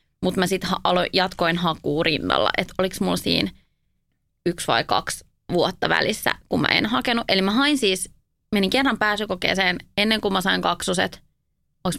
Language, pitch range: Finnish, 175-215 Hz